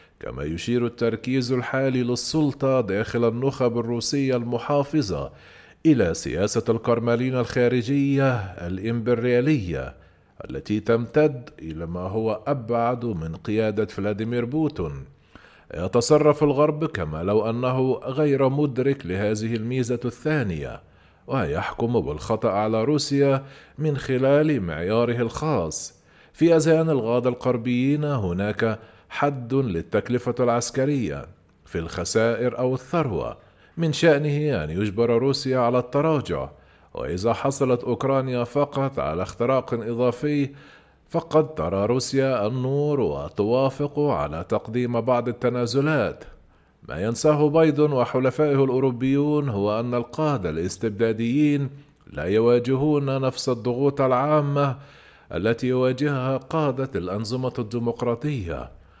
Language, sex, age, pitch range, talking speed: Arabic, male, 40-59, 115-140 Hz, 100 wpm